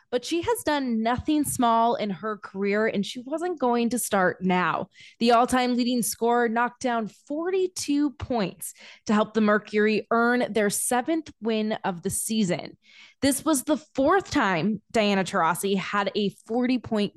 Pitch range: 200-260 Hz